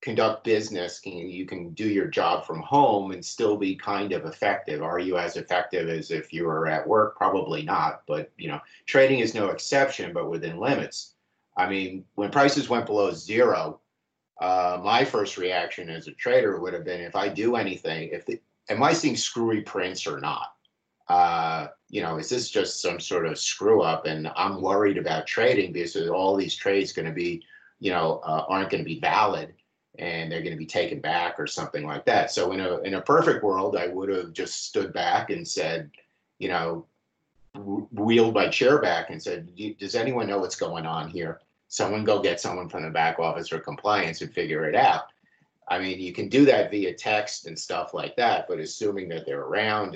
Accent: American